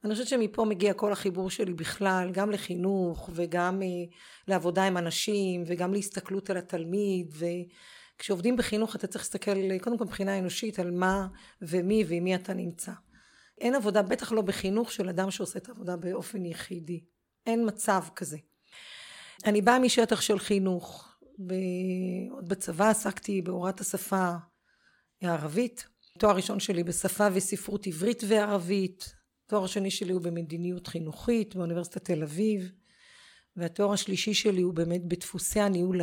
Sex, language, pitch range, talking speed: female, Hebrew, 180-215 Hz, 140 wpm